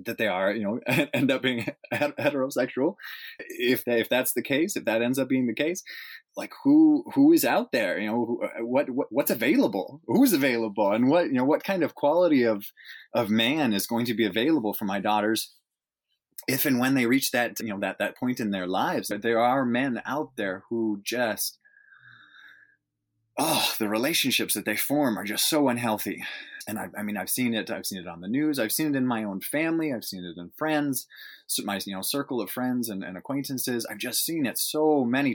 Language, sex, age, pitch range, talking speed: English, male, 20-39, 105-150 Hz, 220 wpm